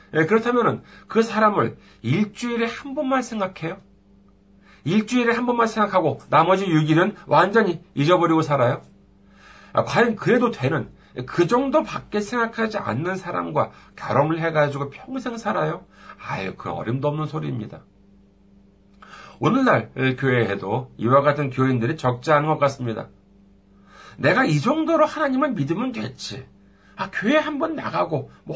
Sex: male